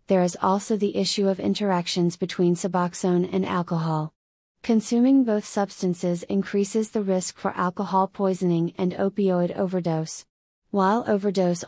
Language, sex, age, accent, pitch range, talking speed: English, female, 30-49, American, 175-200 Hz, 130 wpm